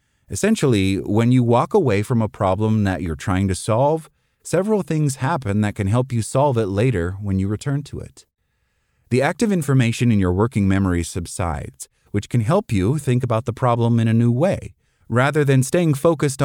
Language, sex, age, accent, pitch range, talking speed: English, male, 30-49, American, 100-135 Hz, 190 wpm